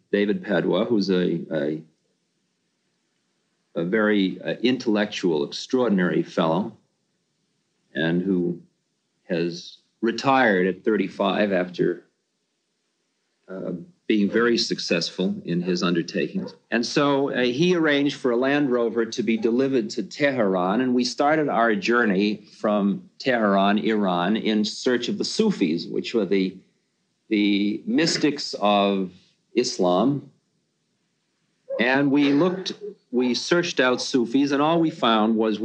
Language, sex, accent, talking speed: English, male, American, 120 wpm